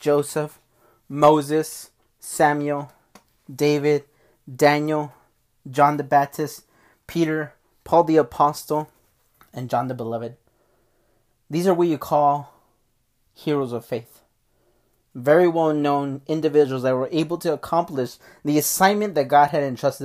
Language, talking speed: English, 115 wpm